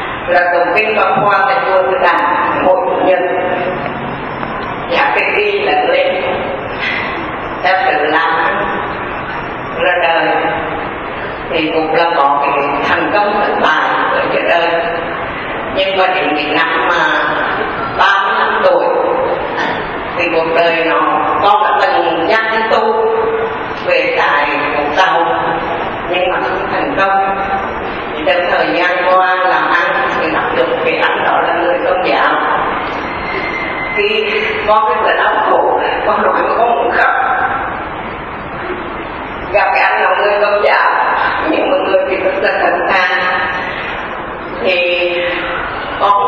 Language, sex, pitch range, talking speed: Vietnamese, female, 175-200 Hz, 135 wpm